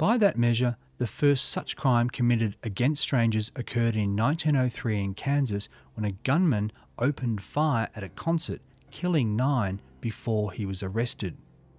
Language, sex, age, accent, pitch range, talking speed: English, male, 40-59, Australian, 105-140 Hz, 150 wpm